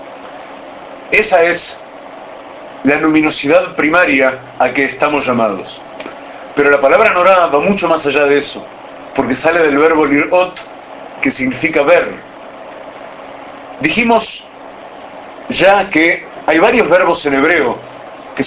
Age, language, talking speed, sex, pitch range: 50-69, Spanish, 115 wpm, male, 135-175 Hz